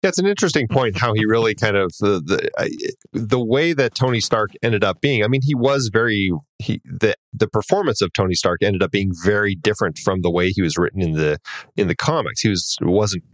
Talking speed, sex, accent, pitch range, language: 225 wpm, male, American, 90-105 Hz, English